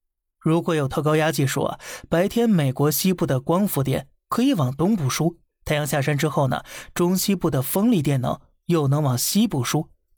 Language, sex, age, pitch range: Chinese, male, 20-39, 135-160 Hz